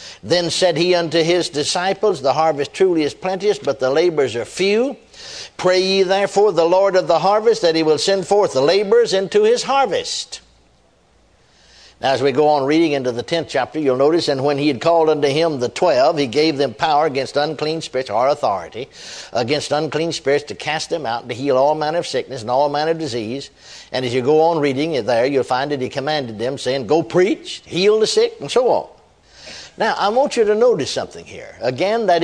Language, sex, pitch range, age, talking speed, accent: English, male, 145-210 Hz, 60-79, 215 wpm, American